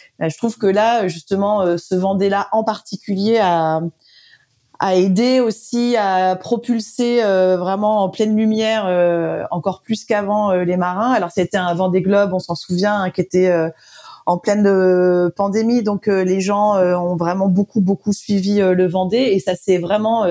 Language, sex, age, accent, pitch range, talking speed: French, female, 30-49, French, 175-210 Hz, 155 wpm